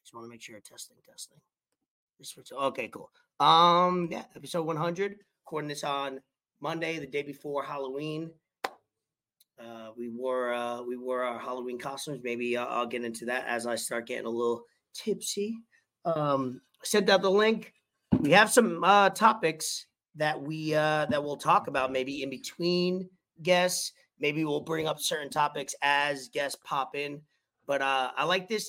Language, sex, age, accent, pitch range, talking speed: English, male, 30-49, American, 125-165 Hz, 165 wpm